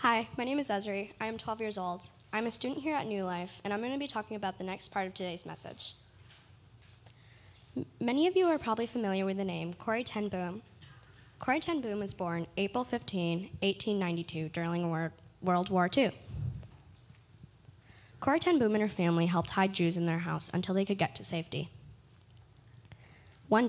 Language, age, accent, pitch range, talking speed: English, 10-29, American, 140-200 Hz, 190 wpm